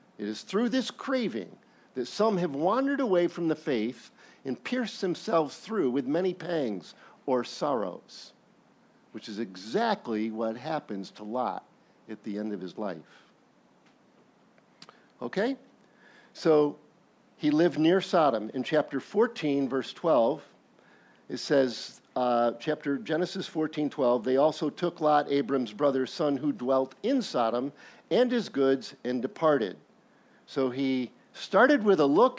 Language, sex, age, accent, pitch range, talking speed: English, male, 50-69, American, 125-195 Hz, 140 wpm